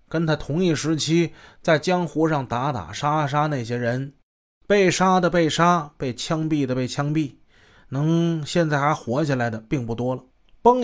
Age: 20-39